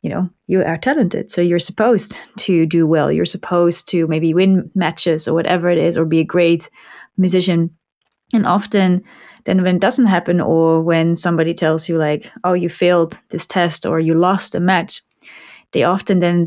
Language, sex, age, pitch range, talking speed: English, female, 20-39, 165-190 Hz, 190 wpm